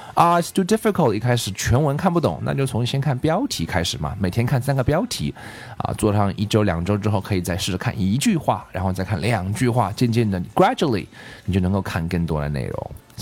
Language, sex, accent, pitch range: Chinese, male, native, 100-145 Hz